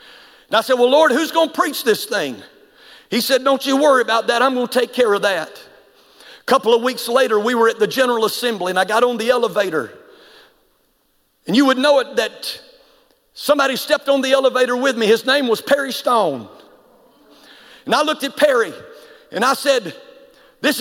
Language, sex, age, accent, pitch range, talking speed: English, male, 50-69, American, 245-290 Hz, 200 wpm